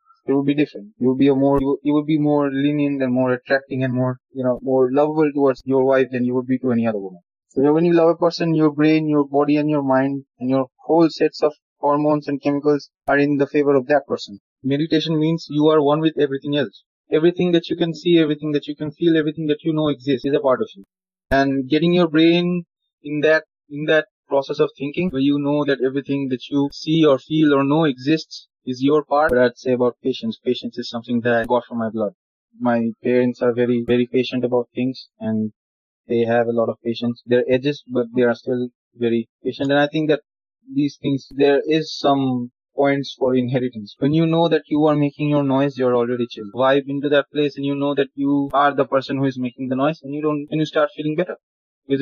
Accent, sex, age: Indian, male, 20-39